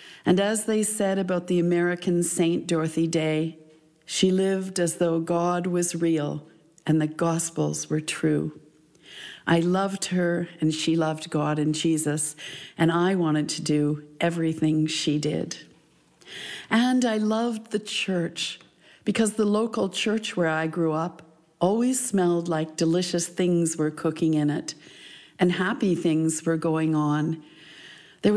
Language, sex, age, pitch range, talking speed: English, female, 50-69, 155-180 Hz, 145 wpm